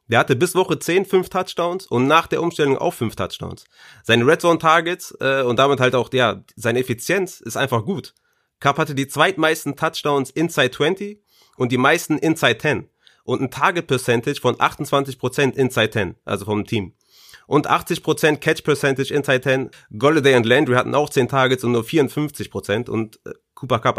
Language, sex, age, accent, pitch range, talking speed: German, male, 30-49, German, 130-160 Hz, 180 wpm